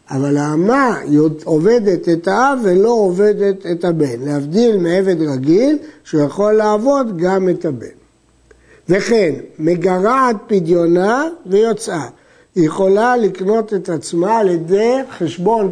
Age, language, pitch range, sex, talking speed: 60-79, Hebrew, 165-225 Hz, male, 110 wpm